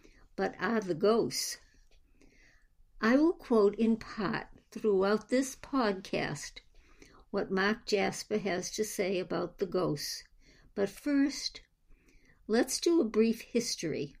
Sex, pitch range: male, 185-225 Hz